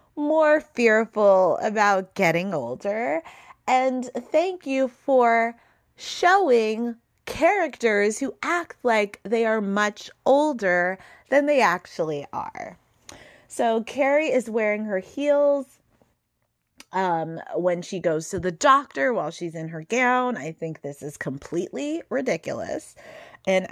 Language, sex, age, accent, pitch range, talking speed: English, female, 20-39, American, 190-270 Hz, 120 wpm